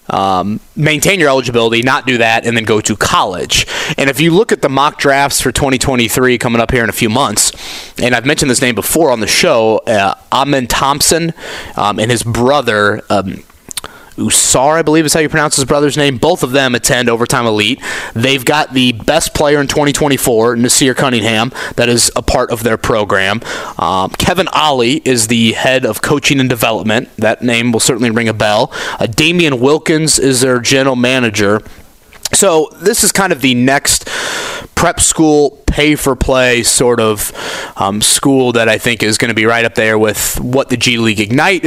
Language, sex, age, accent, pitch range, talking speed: English, male, 30-49, American, 115-145 Hz, 190 wpm